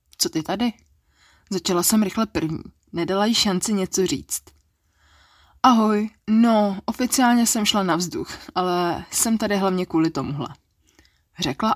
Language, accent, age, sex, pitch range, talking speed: Czech, native, 20-39, female, 140-215 Hz, 135 wpm